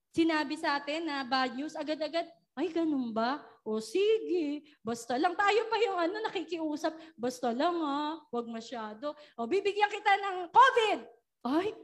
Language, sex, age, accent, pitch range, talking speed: Filipino, female, 20-39, native, 270-395 Hz, 150 wpm